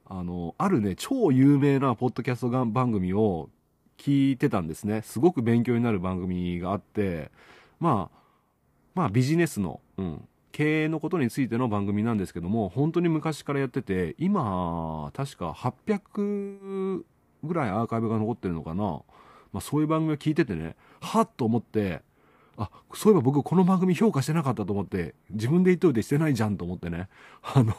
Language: Japanese